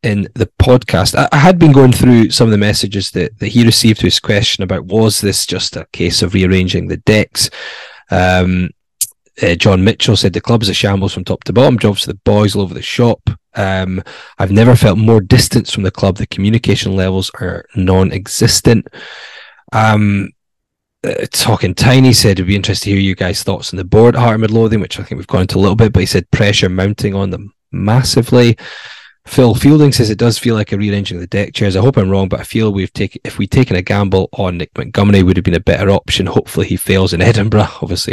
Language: English